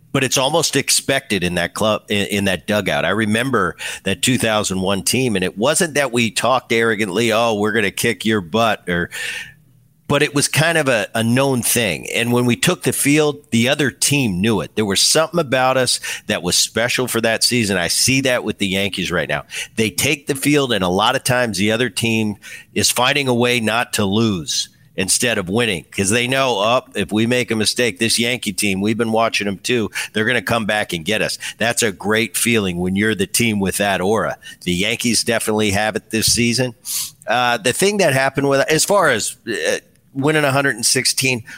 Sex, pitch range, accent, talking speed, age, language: male, 110-135 Hz, American, 210 wpm, 50-69, English